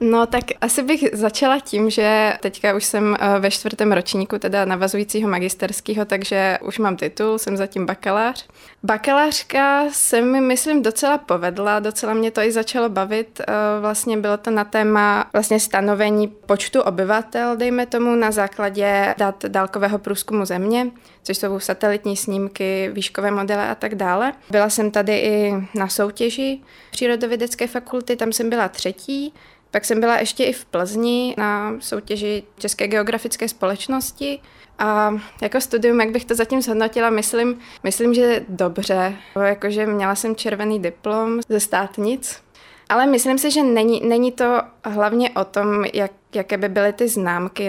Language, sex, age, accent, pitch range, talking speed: Czech, female, 20-39, native, 200-235 Hz, 150 wpm